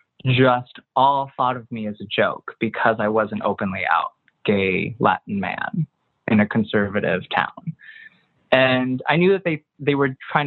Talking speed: 160 wpm